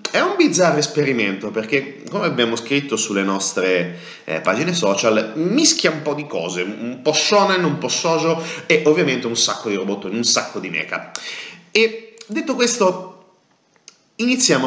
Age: 30-49